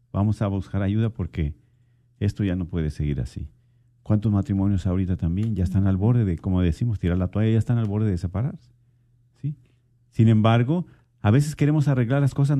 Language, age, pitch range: Spanish, 50-69, 105-125 Hz